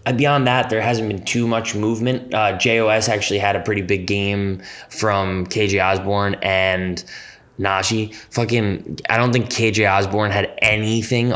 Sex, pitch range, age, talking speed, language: male, 100-125 Hz, 20-39, 150 wpm, English